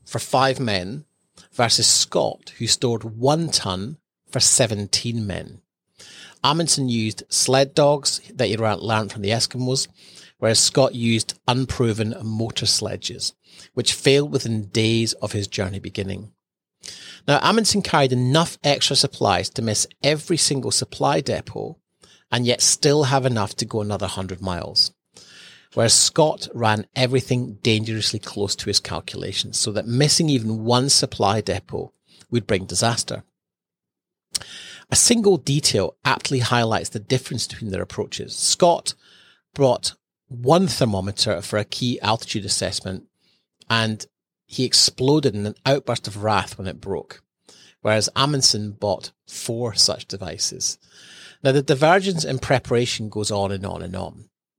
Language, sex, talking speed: English, male, 135 wpm